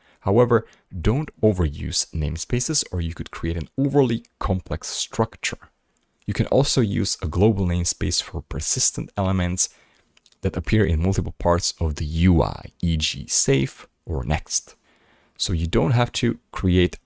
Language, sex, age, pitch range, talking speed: English, male, 30-49, 80-105 Hz, 140 wpm